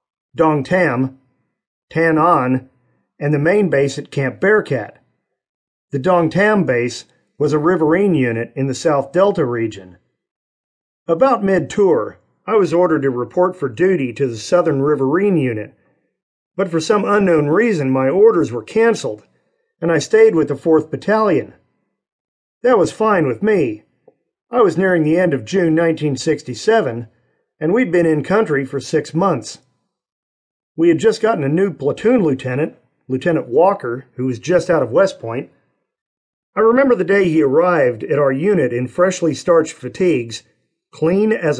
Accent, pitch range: American, 135-200 Hz